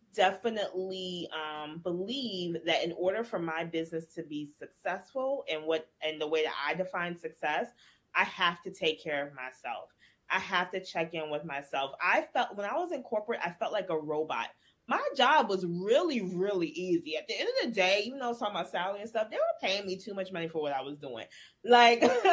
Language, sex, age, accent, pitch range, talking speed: English, female, 20-39, American, 160-210 Hz, 215 wpm